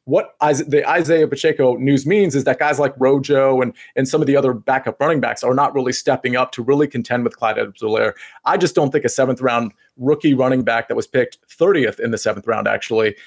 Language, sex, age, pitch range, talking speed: English, male, 30-49, 120-150 Hz, 225 wpm